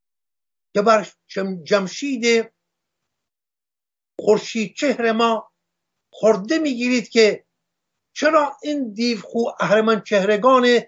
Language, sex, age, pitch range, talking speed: English, male, 50-69, 200-260 Hz, 75 wpm